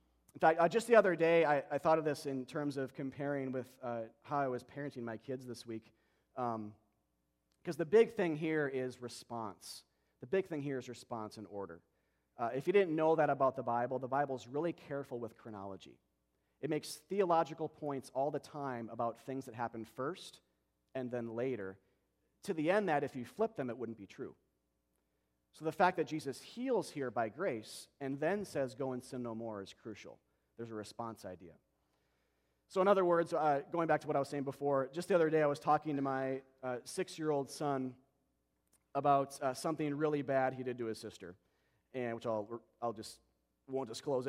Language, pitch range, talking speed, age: English, 115-150 Hz, 205 wpm, 40-59